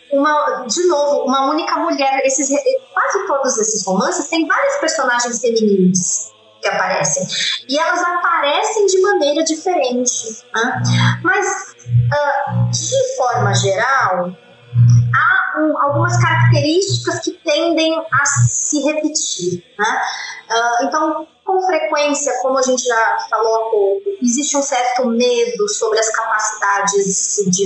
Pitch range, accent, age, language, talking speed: 205-285 Hz, Brazilian, 20-39, Portuguese, 125 wpm